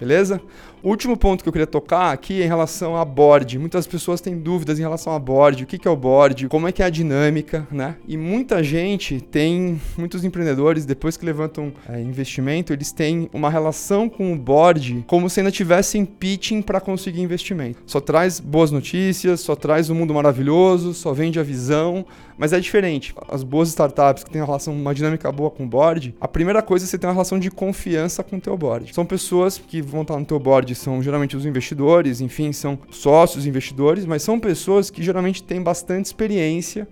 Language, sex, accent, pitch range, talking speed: Portuguese, male, Brazilian, 145-185 Hz, 200 wpm